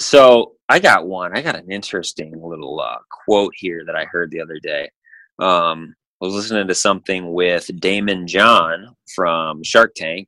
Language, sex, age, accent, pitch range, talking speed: English, male, 30-49, American, 85-105 Hz, 175 wpm